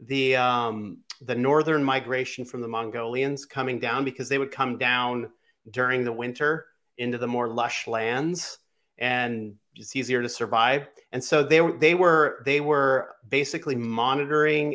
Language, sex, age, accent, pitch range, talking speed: English, male, 40-59, American, 120-150 Hz, 150 wpm